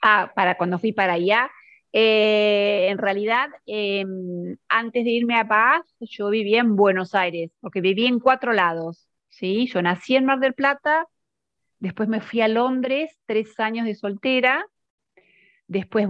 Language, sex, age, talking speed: Spanish, female, 40-59, 155 wpm